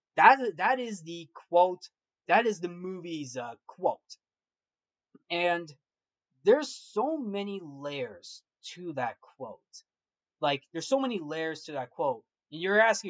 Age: 20-39